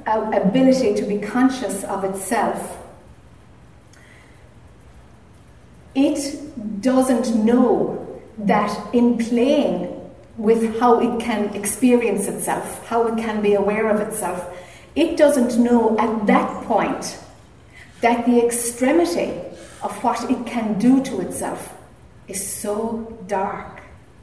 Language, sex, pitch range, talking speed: English, female, 210-255 Hz, 110 wpm